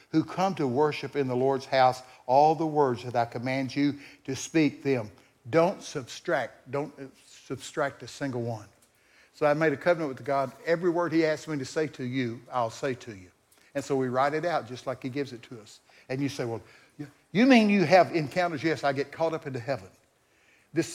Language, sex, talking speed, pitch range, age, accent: English, male, 215 wpm, 130-175 Hz, 60-79, American